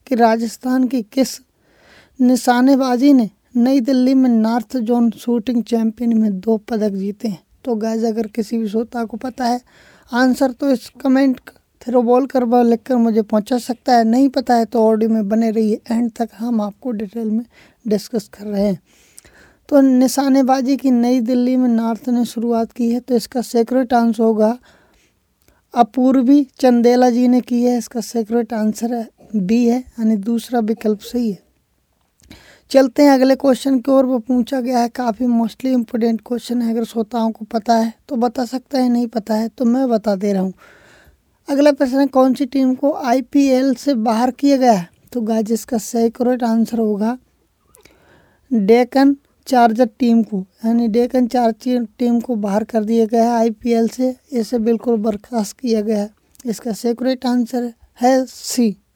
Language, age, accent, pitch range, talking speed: English, 20-39, Indian, 225-255 Hz, 120 wpm